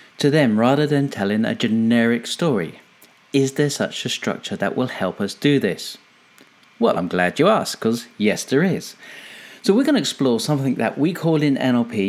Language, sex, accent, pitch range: English, male, British, 115-175 Hz